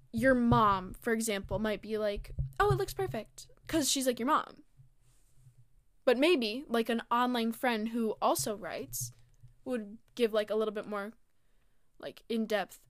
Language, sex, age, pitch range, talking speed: English, female, 10-29, 205-235 Hz, 160 wpm